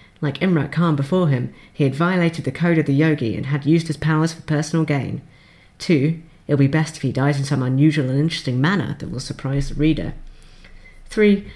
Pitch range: 135-160 Hz